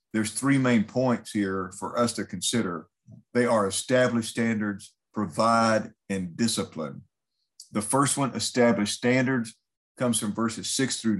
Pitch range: 105-130 Hz